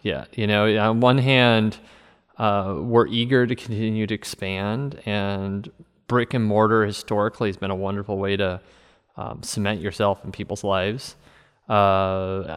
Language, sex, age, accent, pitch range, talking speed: English, male, 30-49, American, 100-115 Hz, 150 wpm